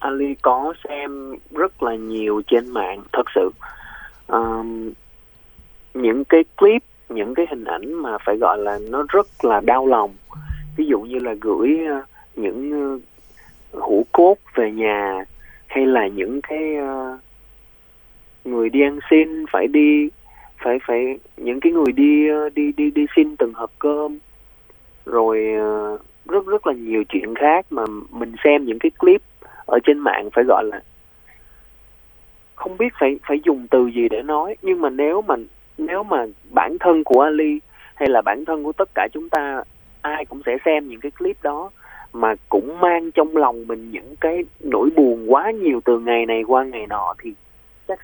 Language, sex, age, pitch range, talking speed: Vietnamese, male, 20-39, 115-160 Hz, 175 wpm